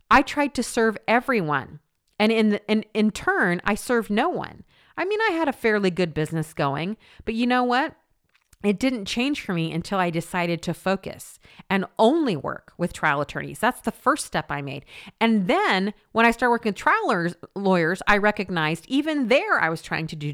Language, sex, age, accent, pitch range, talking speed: English, female, 40-59, American, 170-235 Hz, 200 wpm